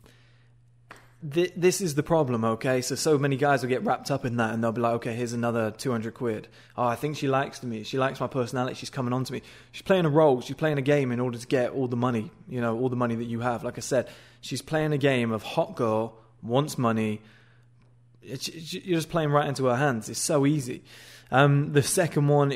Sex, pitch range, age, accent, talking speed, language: male, 120-140 Hz, 20-39, British, 235 wpm, English